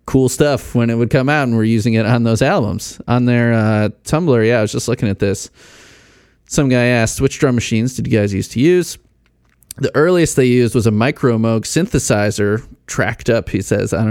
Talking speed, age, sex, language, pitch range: 220 wpm, 30-49, male, English, 110-135 Hz